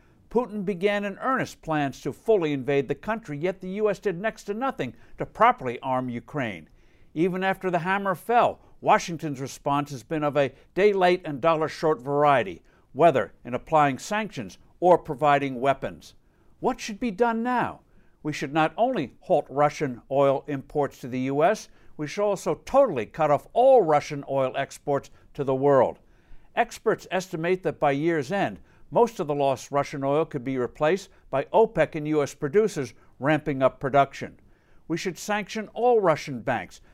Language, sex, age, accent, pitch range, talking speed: English, male, 60-79, American, 140-190 Hz, 165 wpm